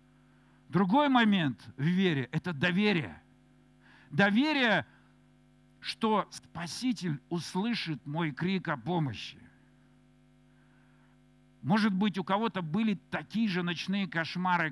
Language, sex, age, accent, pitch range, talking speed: Russian, male, 50-69, native, 155-215 Hz, 100 wpm